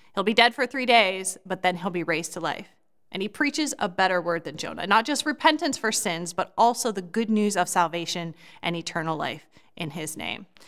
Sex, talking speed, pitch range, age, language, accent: female, 220 wpm, 180-240 Hz, 30-49, English, American